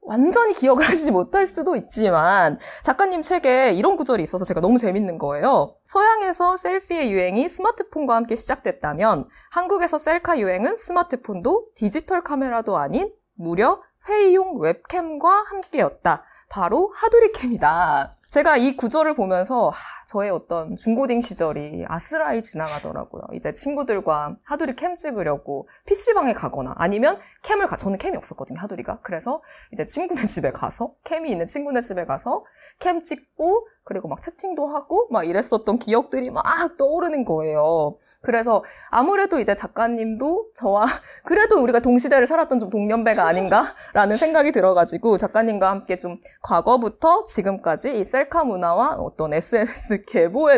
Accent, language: native, Korean